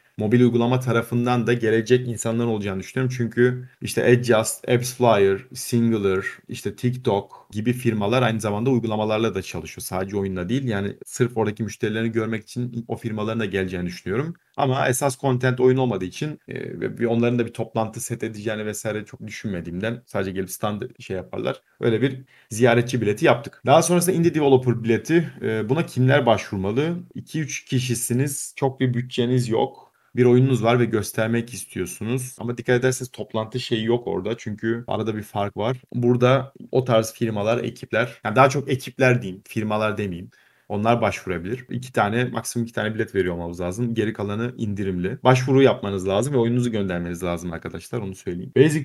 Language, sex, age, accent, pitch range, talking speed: Turkish, male, 40-59, native, 105-125 Hz, 160 wpm